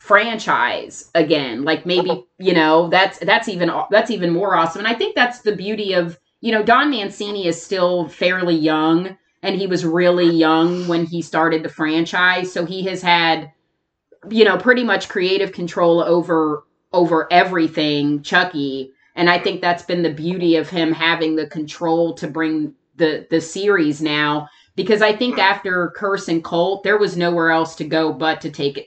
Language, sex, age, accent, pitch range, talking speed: English, female, 30-49, American, 160-195 Hz, 180 wpm